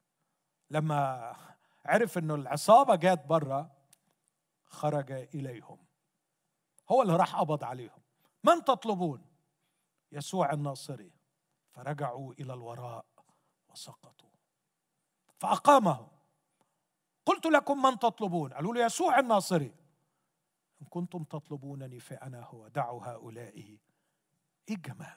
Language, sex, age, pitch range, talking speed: Arabic, male, 50-69, 145-220 Hz, 95 wpm